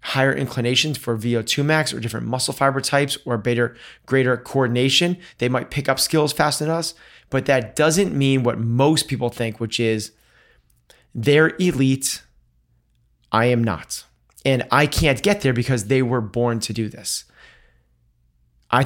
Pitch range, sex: 110-130 Hz, male